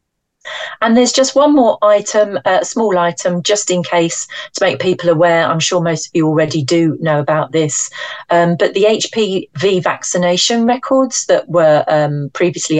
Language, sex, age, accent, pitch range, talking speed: English, female, 40-59, British, 150-180 Hz, 175 wpm